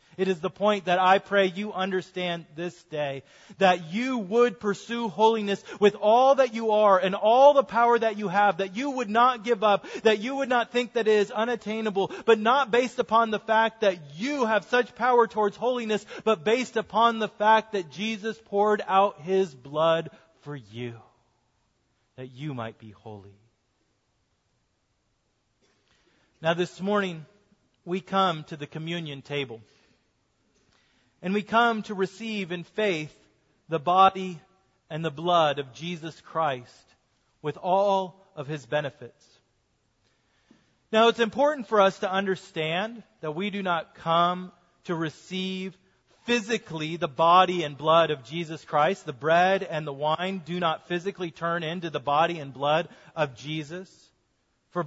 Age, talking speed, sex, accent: 30-49, 155 wpm, male, American